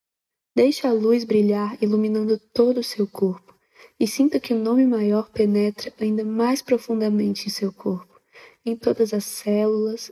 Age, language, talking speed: 20-39, English, 155 wpm